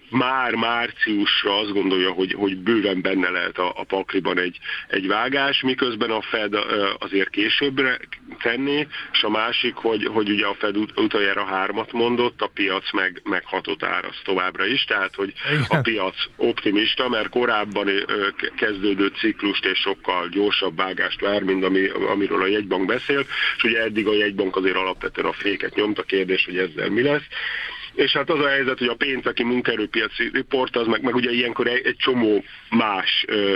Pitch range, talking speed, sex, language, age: 95-115 Hz, 160 wpm, male, Hungarian, 50-69